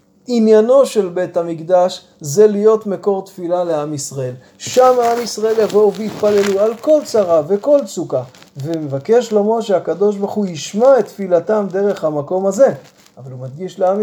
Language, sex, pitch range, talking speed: Hebrew, male, 170-220 Hz, 150 wpm